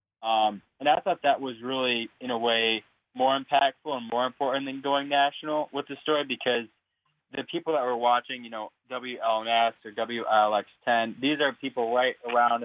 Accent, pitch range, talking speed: American, 110-130 Hz, 190 wpm